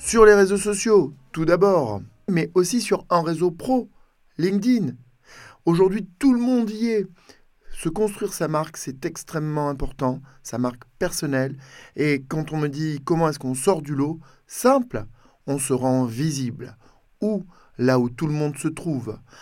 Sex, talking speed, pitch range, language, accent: male, 165 wpm, 130-185 Hz, French, French